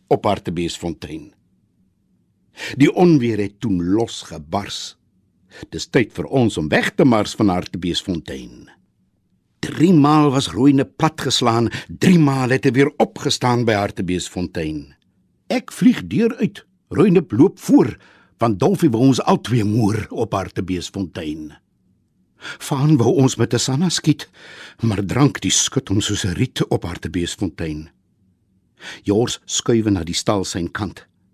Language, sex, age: Dutch, male, 60-79